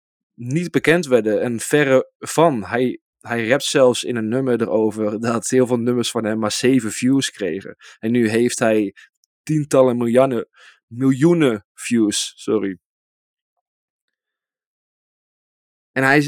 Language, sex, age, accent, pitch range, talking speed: Dutch, male, 20-39, Dutch, 110-135 Hz, 125 wpm